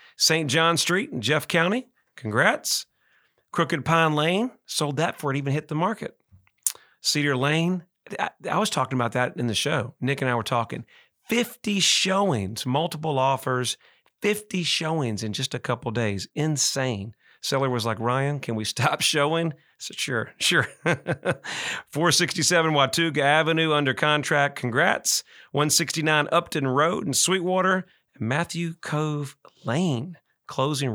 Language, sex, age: English, male, 40-59